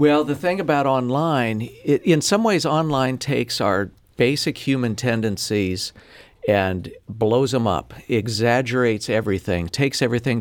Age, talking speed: 50-69, 125 wpm